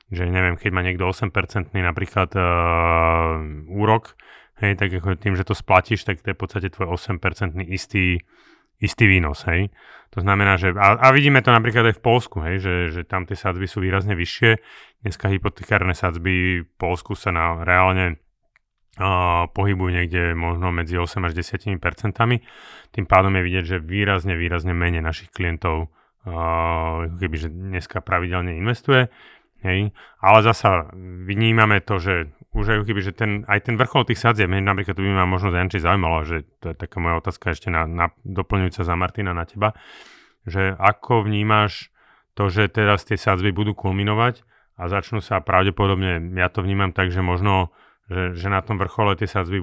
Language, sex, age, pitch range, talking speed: Slovak, male, 30-49, 90-100 Hz, 170 wpm